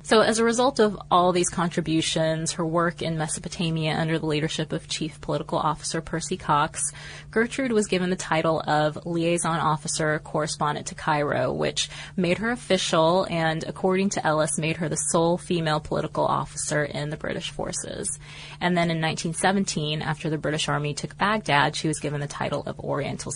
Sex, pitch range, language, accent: female, 150-180 Hz, English, American